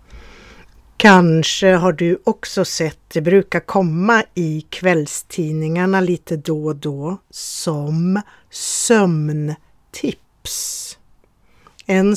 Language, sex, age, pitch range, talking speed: Swedish, female, 50-69, 155-200 Hz, 85 wpm